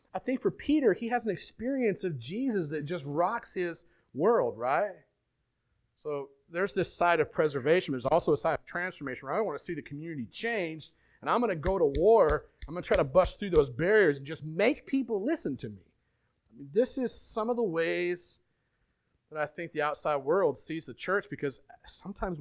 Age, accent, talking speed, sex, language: 40-59, American, 210 wpm, male, English